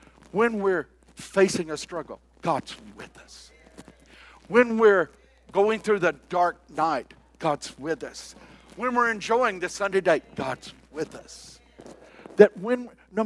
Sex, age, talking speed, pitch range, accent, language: male, 60-79, 135 wpm, 150-220 Hz, American, English